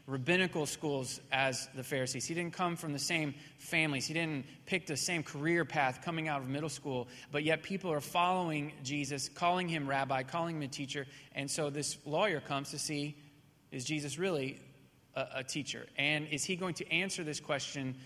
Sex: male